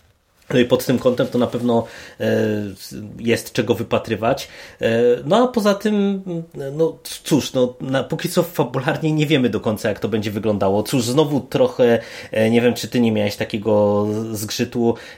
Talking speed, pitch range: 175 wpm, 105-120 Hz